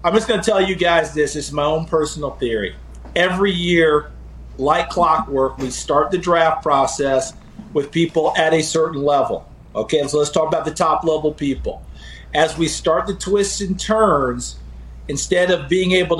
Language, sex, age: English, male, 50-69